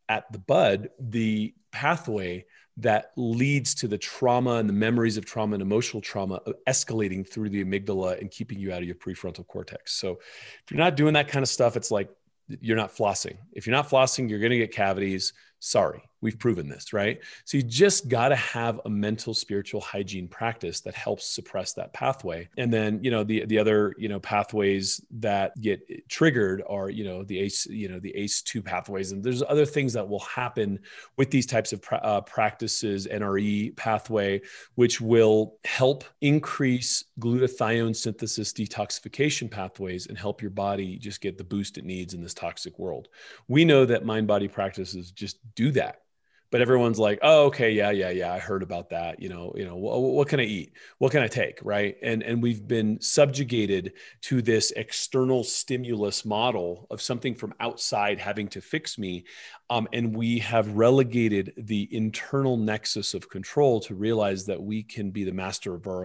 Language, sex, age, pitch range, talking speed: English, male, 30-49, 100-120 Hz, 185 wpm